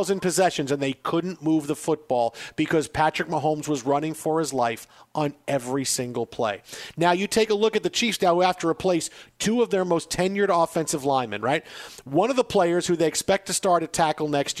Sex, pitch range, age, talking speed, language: male, 150-190 Hz, 50-69, 220 wpm, English